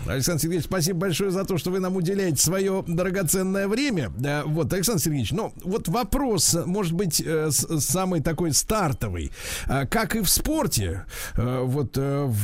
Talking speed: 140 wpm